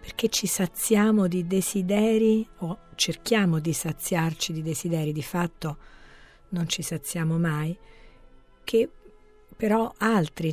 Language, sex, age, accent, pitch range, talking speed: Italian, female, 40-59, native, 160-205 Hz, 115 wpm